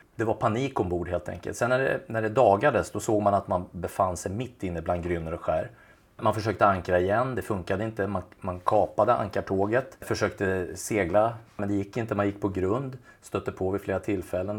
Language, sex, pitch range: Swedish, male, 90-110 Hz